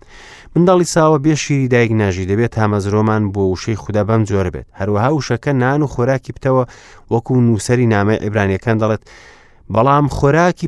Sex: male